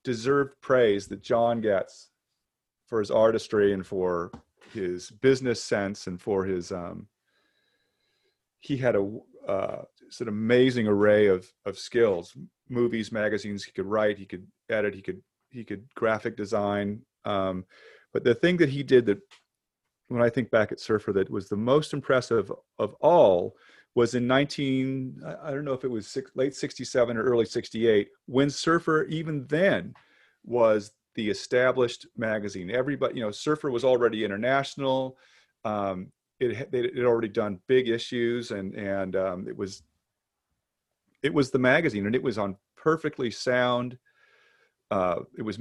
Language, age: English, 30-49